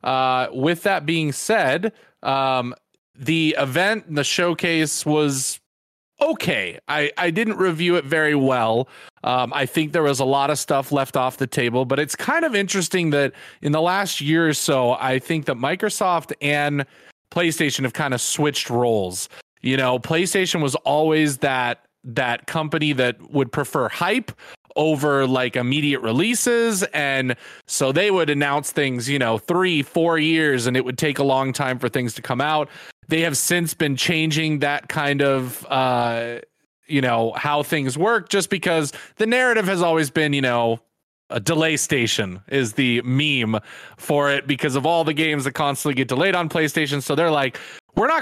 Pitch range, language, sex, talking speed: 130-160 Hz, English, male, 175 wpm